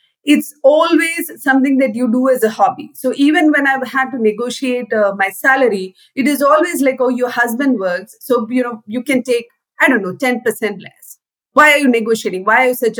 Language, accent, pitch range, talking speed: English, Indian, 230-280 Hz, 210 wpm